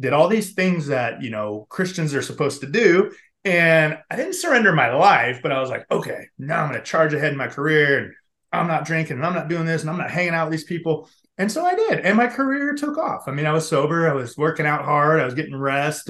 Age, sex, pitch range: 30-49, male, 135-165 Hz